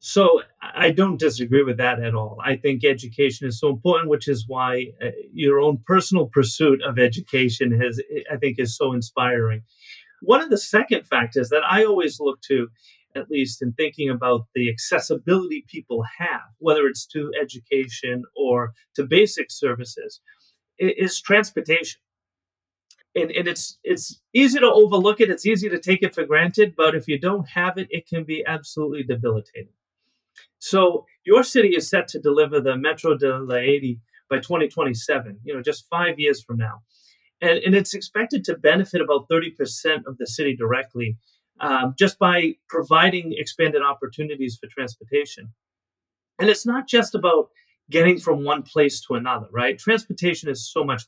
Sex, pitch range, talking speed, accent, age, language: male, 125-185 Hz, 165 wpm, American, 30-49, English